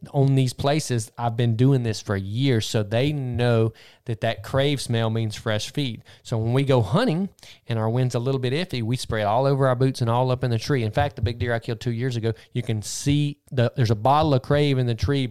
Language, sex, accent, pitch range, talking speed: English, male, American, 110-130 Hz, 260 wpm